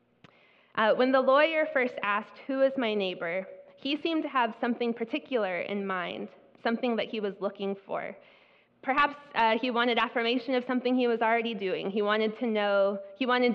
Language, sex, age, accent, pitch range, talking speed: English, female, 20-39, American, 195-240 Hz, 180 wpm